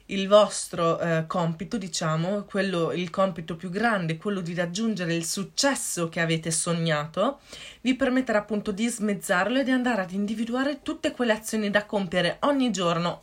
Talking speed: 155 wpm